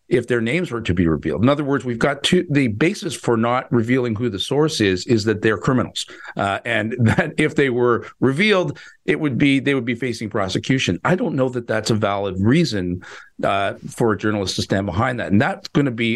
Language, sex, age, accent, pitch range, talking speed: English, male, 50-69, American, 100-130 Hz, 225 wpm